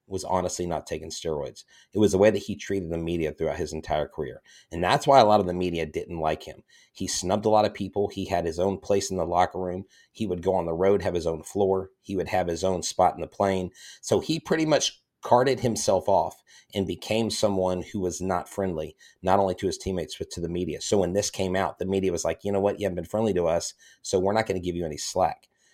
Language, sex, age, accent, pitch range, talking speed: English, male, 30-49, American, 90-100 Hz, 265 wpm